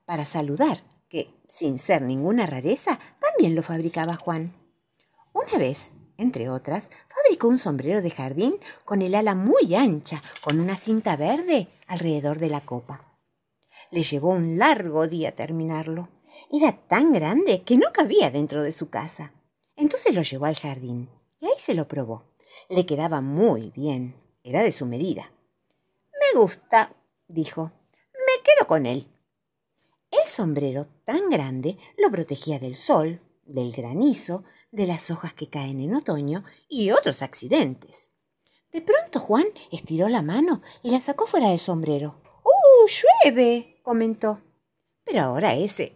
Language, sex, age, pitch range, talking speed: Spanish, female, 50-69, 150-245 Hz, 150 wpm